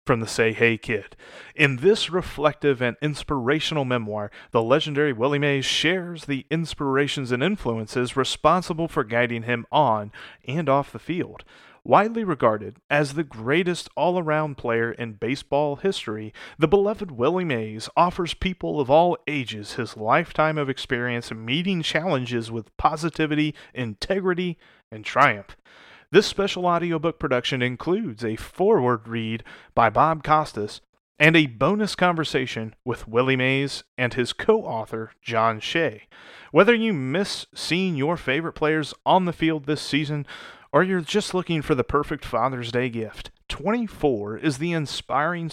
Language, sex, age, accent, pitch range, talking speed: English, male, 30-49, American, 120-165 Hz, 140 wpm